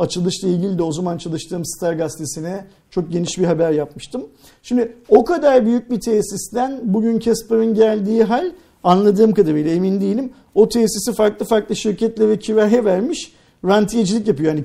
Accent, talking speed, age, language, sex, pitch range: native, 155 wpm, 50-69, Turkish, male, 185-245 Hz